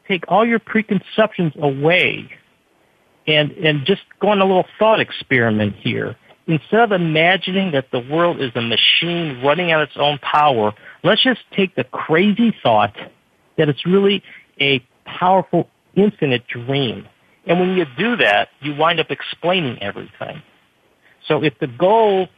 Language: English